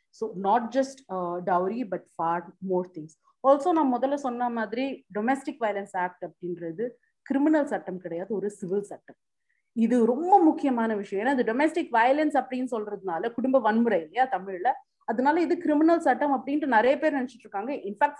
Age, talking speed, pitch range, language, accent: 30-49, 155 wpm, 205-280 Hz, Tamil, native